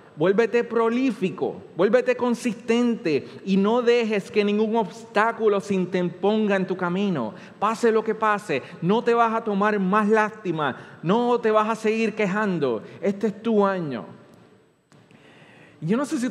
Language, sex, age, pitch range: Spanish, male, 30-49, 160-230 Hz